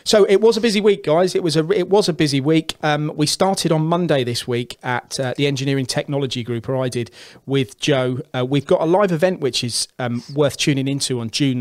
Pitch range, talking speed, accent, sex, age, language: 115-145 Hz, 245 wpm, British, male, 30-49, English